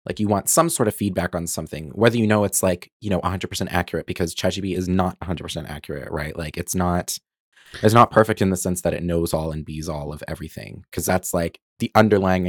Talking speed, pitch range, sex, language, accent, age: 230 wpm, 80-95 Hz, male, English, American, 30-49